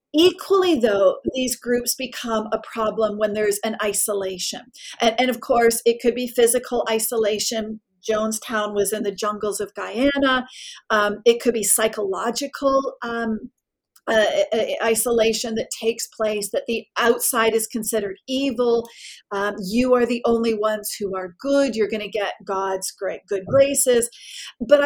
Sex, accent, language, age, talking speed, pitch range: female, American, English, 40-59, 150 wpm, 215-260 Hz